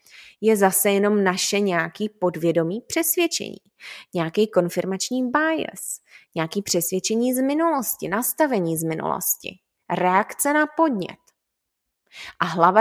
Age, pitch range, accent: 20-39, 185-245 Hz, native